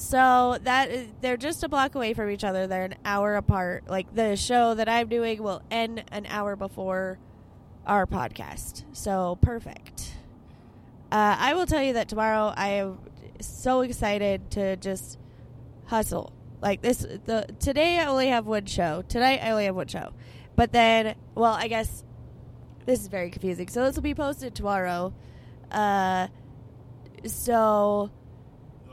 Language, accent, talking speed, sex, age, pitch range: English, American, 155 wpm, female, 20-39, 195-245 Hz